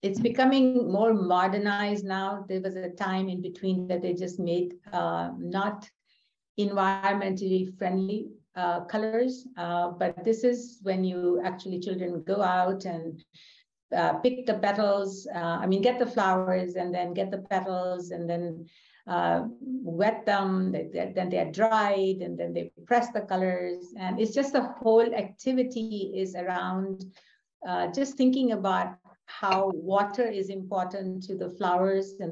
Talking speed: 155 wpm